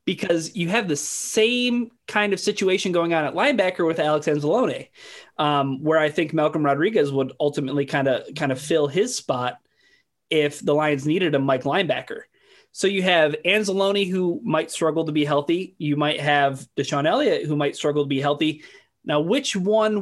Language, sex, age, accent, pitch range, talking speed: English, male, 30-49, American, 145-190 Hz, 185 wpm